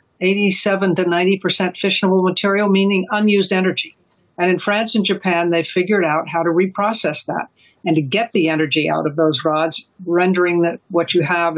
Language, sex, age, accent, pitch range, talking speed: English, female, 60-79, American, 165-195 Hz, 175 wpm